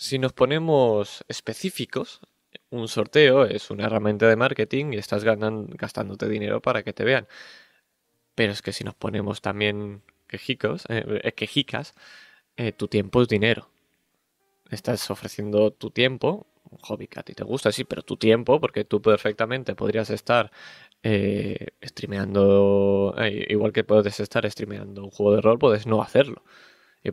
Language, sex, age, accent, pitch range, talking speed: Spanish, male, 20-39, Spanish, 100-115 Hz, 155 wpm